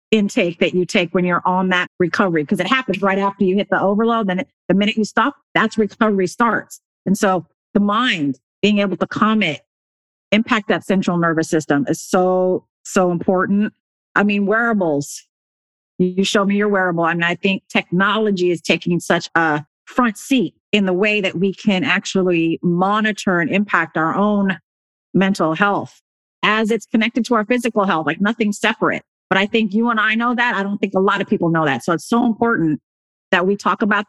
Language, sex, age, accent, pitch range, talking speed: English, female, 50-69, American, 175-215 Hz, 195 wpm